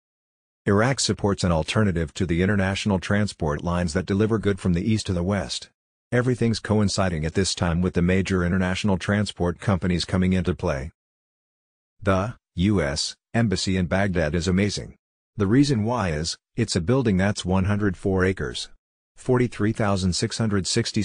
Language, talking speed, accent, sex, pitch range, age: English, 145 wpm, American, male, 90-105 Hz, 50-69